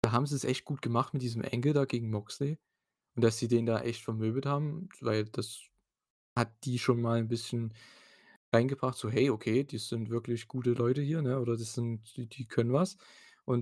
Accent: German